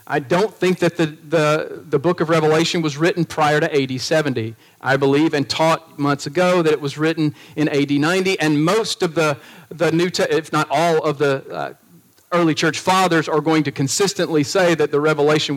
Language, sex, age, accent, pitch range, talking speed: English, male, 40-59, American, 150-195 Hz, 205 wpm